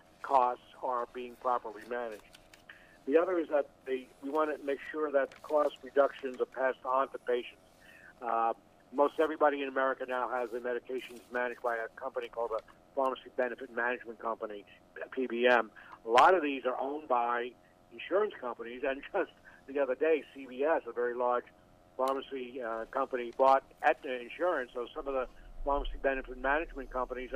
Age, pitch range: 60-79, 120-135 Hz